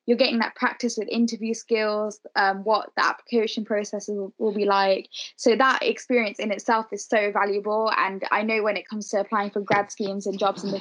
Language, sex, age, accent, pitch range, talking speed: English, female, 10-29, British, 205-235 Hz, 215 wpm